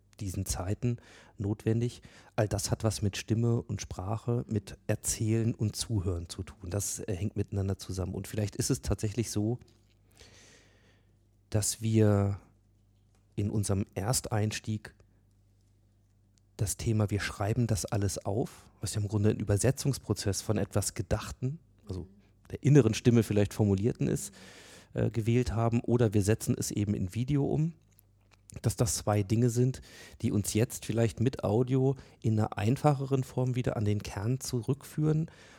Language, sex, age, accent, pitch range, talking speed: German, male, 40-59, German, 100-120 Hz, 145 wpm